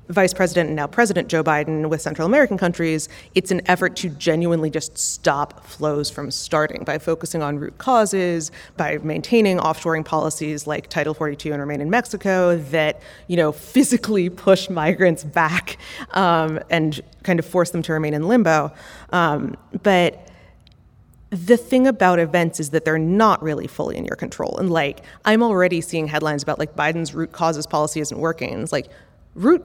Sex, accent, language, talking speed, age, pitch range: female, American, English, 175 wpm, 30-49, 160-220 Hz